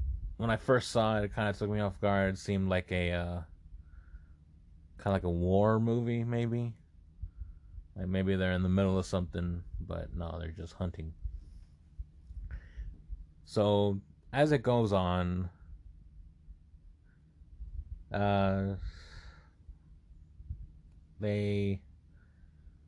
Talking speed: 115 wpm